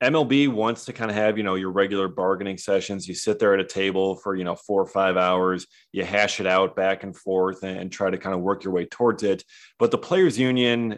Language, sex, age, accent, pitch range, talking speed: English, male, 30-49, American, 95-120 Hz, 250 wpm